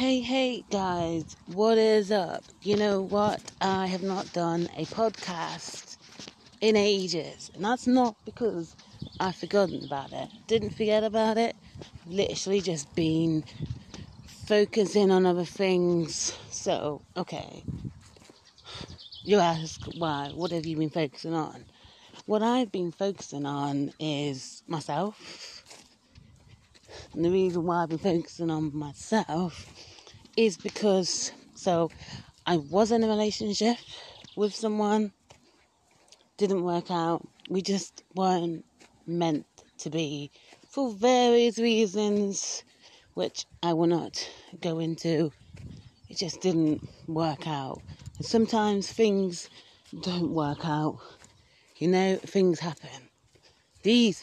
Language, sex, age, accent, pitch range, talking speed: English, female, 30-49, British, 160-210 Hz, 115 wpm